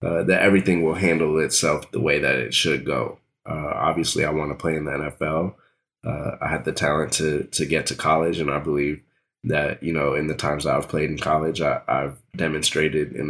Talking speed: 215 wpm